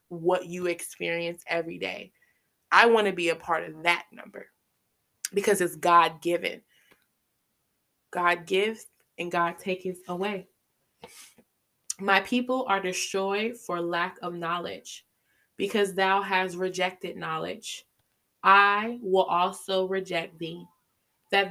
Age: 20-39